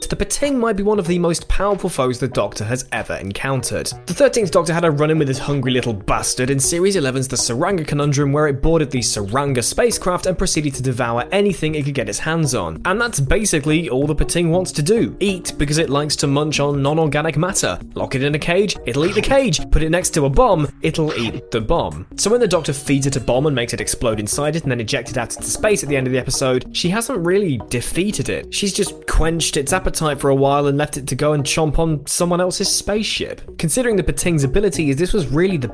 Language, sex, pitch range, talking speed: English, male, 130-180 Hz, 245 wpm